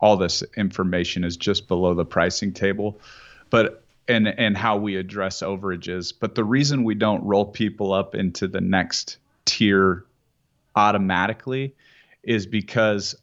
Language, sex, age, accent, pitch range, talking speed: English, male, 30-49, American, 95-115 Hz, 140 wpm